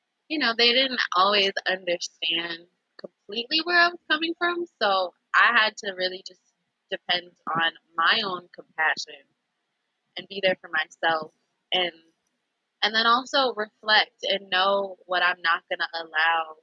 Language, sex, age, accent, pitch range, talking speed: English, female, 20-39, American, 170-205 Hz, 150 wpm